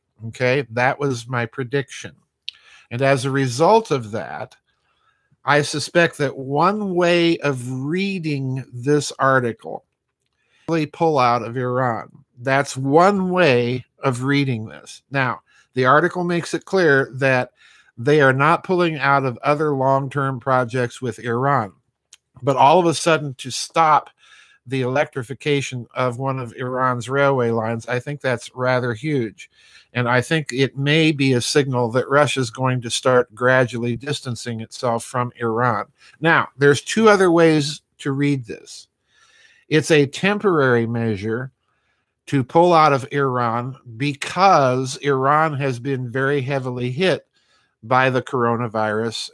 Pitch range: 125-145 Hz